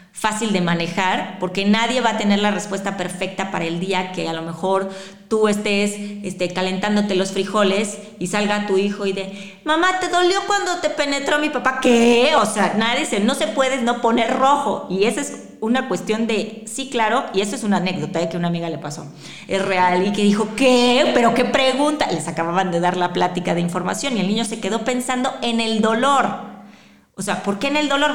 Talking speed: 210 wpm